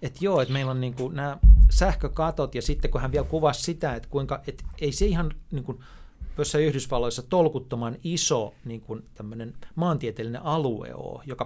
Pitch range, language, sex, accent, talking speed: 115-145 Hz, Finnish, male, native, 150 wpm